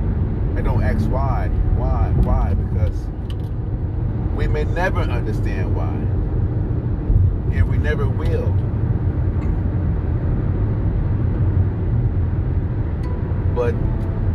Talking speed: 65 wpm